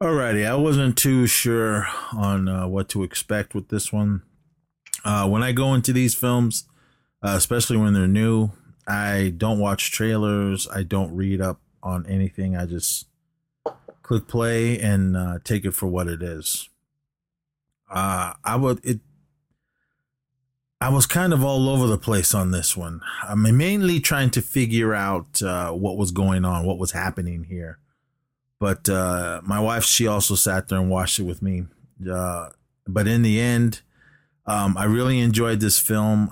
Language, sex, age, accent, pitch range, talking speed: English, male, 30-49, American, 95-125 Hz, 165 wpm